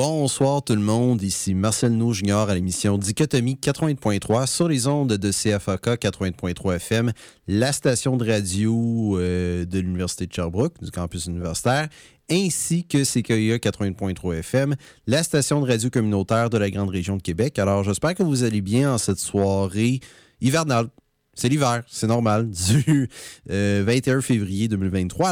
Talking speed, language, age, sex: 155 wpm, French, 30-49, male